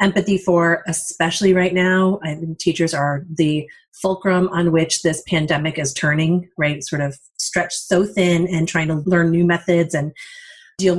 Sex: female